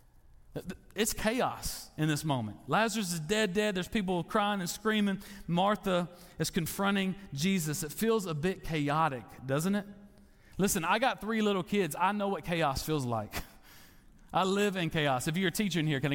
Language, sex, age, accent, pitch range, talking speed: English, male, 40-59, American, 140-205 Hz, 180 wpm